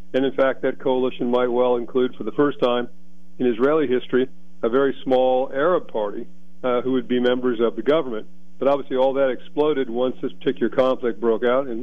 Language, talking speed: English, 205 wpm